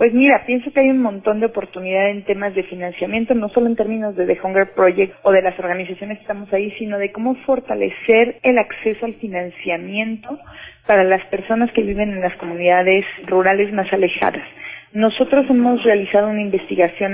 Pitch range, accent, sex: 190-225 Hz, Mexican, female